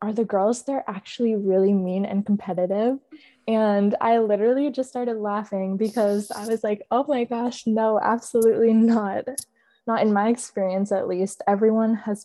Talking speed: 160 wpm